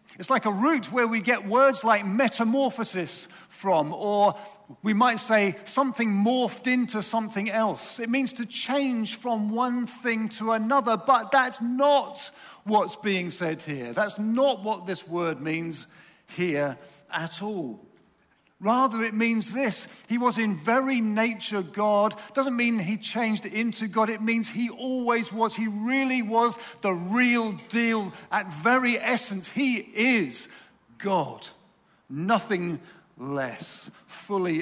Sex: male